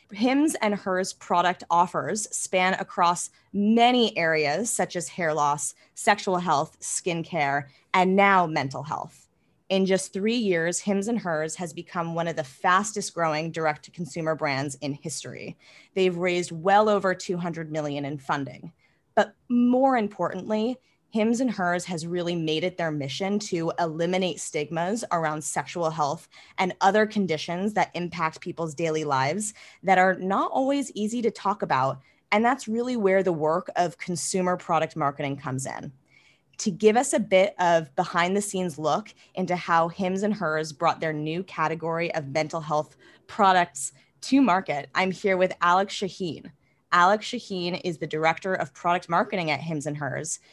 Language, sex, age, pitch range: English, female, 20-39, 160-195 Hz